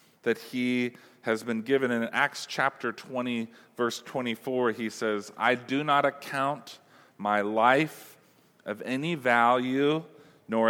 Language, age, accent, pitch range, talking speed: English, 40-59, American, 120-155 Hz, 130 wpm